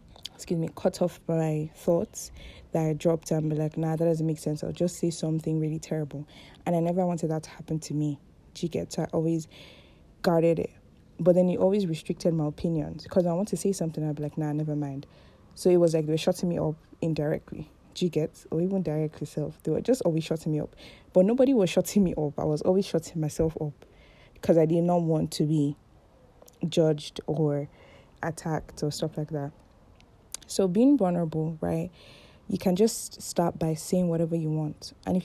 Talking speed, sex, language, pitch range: 205 wpm, female, English, 155-180 Hz